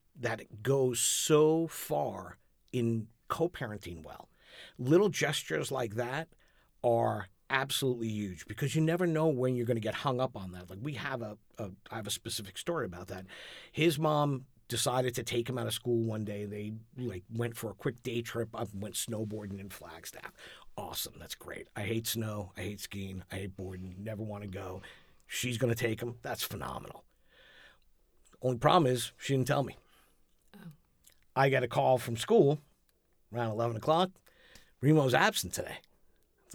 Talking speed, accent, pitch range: 175 wpm, American, 100-130 Hz